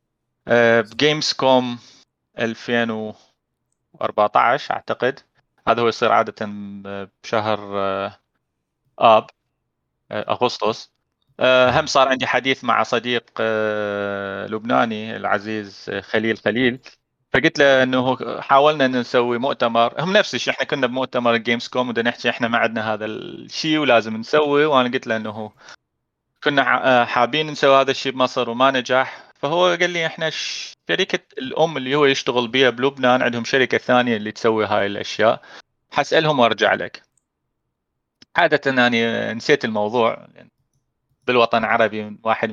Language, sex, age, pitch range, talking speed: Arabic, male, 30-49, 110-135 Hz, 130 wpm